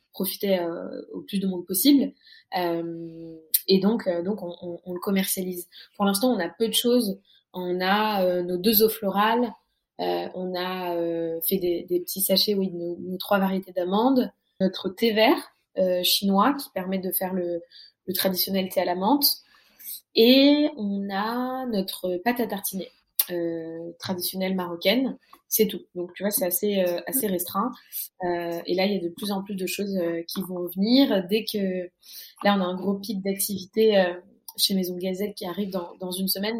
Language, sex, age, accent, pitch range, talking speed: French, female, 20-39, French, 180-210 Hz, 195 wpm